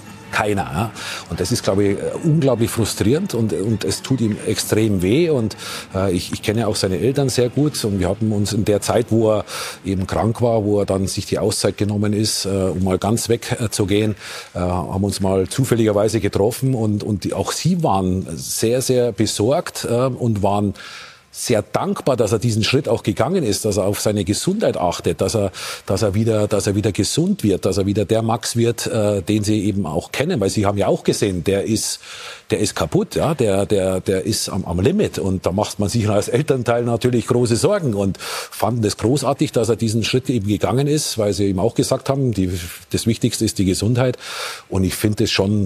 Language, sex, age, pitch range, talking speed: German, male, 40-59, 95-115 Hz, 220 wpm